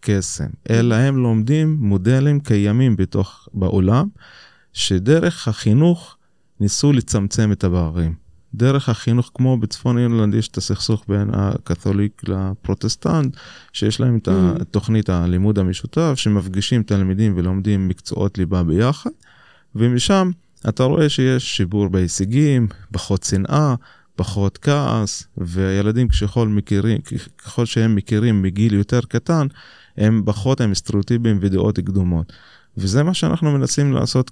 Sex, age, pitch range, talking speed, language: male, 20-39, 95-130 Hz, 115 wpm, Hebrew